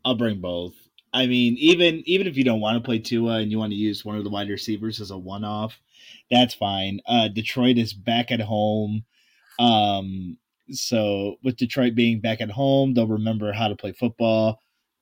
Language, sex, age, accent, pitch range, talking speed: English, male, 20-39, American, 100-120 Hz, 195 wpm